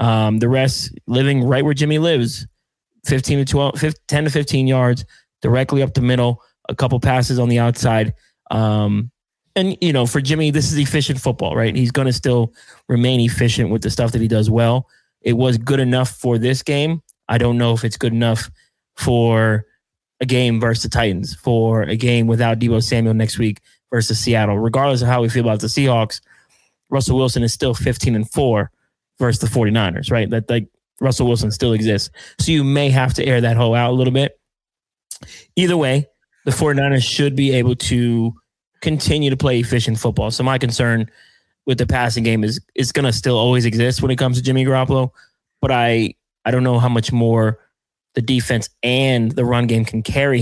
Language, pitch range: English, 115-130 Hz